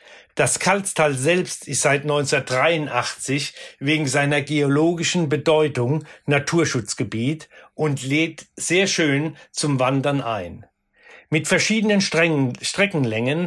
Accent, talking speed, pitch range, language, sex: German, 95 wpm, 140-170 Hz, German, male